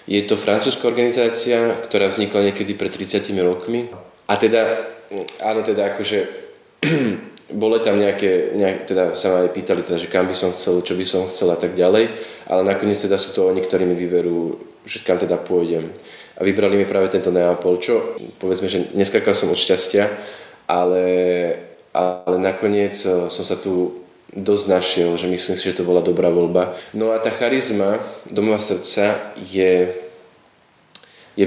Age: 20-39